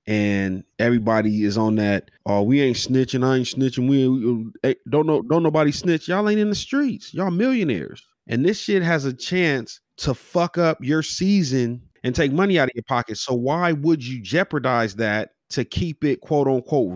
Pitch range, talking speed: 115-140 Hz, 200 wpm